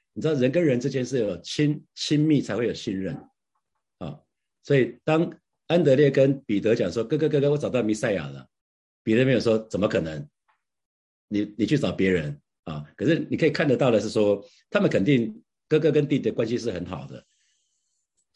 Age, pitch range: 50-69, 105-150 Hz